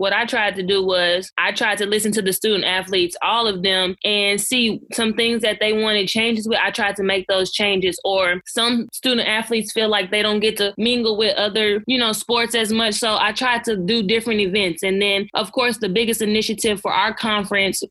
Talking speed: 220 wpm